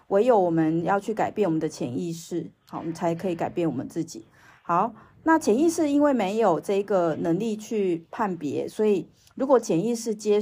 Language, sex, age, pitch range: Chinese, female, 30-49, 160-220 Hz